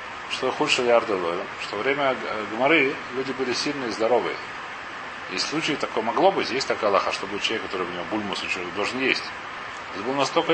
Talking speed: 175 wpm